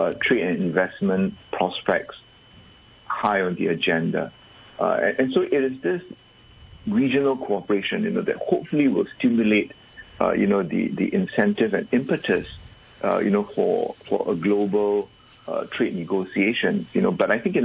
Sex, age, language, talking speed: male, 50-69, English, 165 wpm